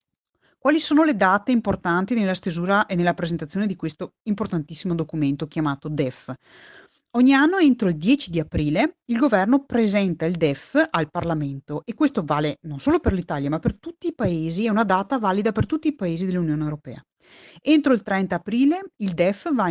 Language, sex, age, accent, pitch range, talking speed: Italian, female, 30-49, native, 160-235 Hz, 180 wpm